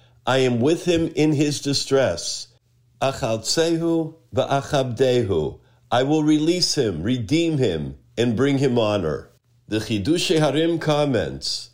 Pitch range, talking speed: 120-155 Hz, 105 wpm